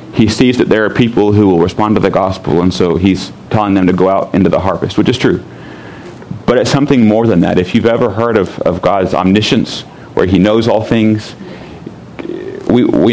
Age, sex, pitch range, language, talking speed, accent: 40-59, male, 100-120 Hz, English, 215 wpm, American